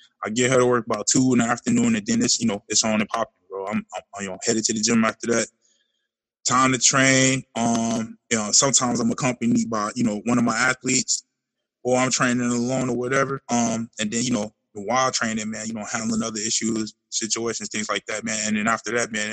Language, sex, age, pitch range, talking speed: English, male, 20-39, 110-125 Hz, 240 wpm